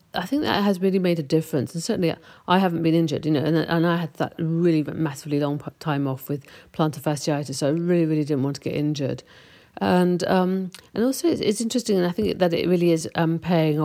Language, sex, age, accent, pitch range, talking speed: English, female, 50-69, British, 150-175 Hz, 235 wpm